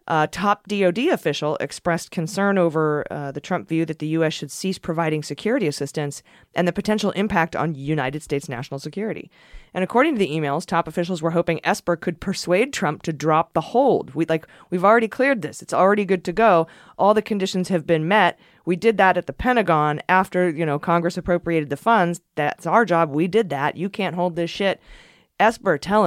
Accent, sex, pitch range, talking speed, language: American, female, 150-180 Hz, 205 wpm, English